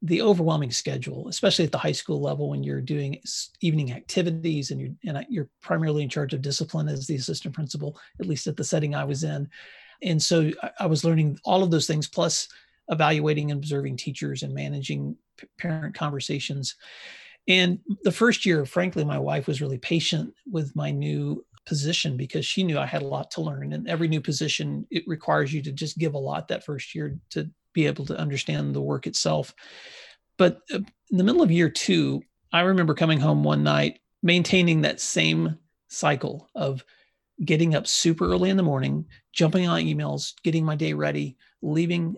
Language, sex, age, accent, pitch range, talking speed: English, male, 40-59, American, 125-165 Hz, 185 wpm